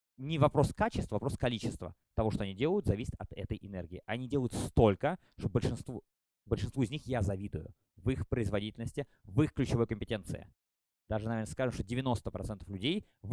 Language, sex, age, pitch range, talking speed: Russian, male, 20-39, 105-140 Hz, 165 wpm